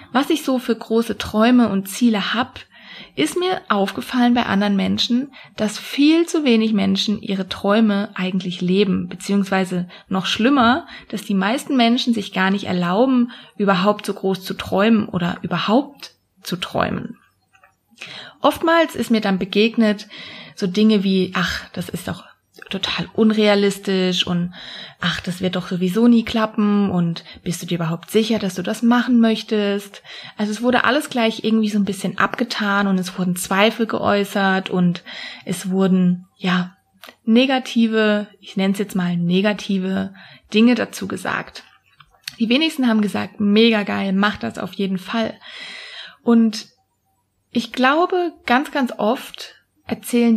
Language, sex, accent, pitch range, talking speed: German, female, German, 195-235 Hz, 150 wpm